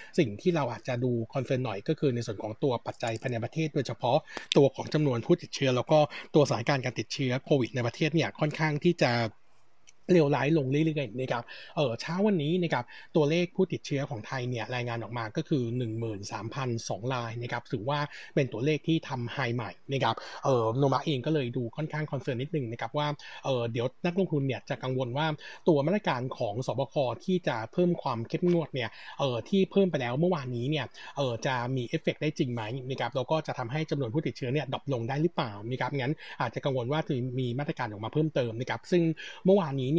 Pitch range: 125-155 Hz